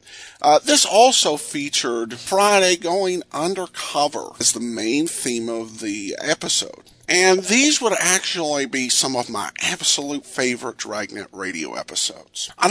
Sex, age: male, 50-69